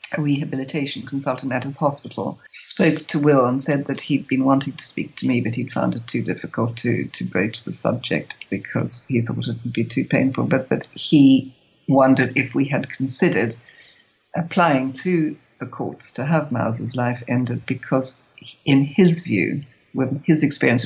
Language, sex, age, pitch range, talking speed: English, female, 60-79, 125-150 Hz, 180 wpm